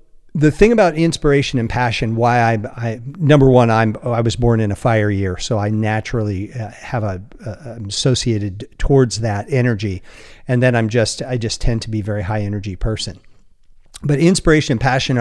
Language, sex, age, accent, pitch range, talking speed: English, male, 50-69, American, 110-135 Hz, 180 wpm